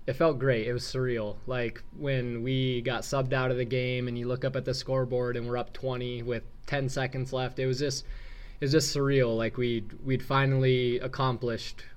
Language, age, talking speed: English, 20-39, 210 wpm